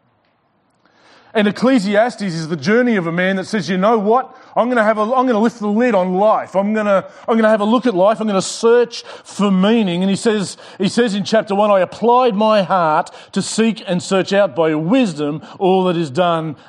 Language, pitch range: English, 180-225 Hz